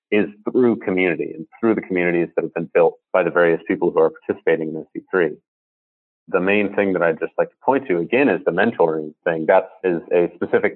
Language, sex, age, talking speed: English, male, 30-49, 225 wpm